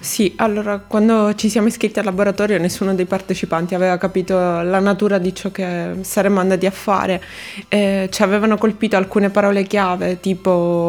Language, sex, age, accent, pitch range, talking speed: Italian, female, 20-39, native, 190-215 Hz, 160 wpm